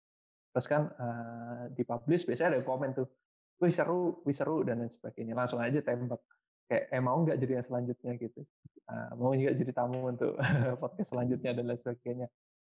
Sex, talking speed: male, 175 wpm